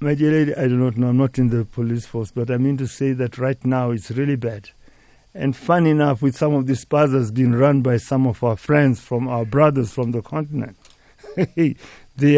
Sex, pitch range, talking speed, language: male, 125-160 Hz, 225 wpm, English